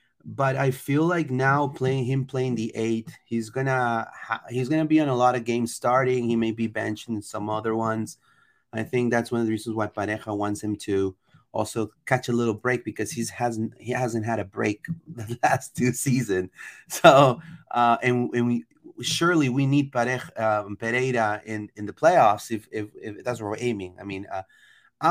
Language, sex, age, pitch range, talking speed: English, male, 30-49, 105-130 Hz, 200 wpm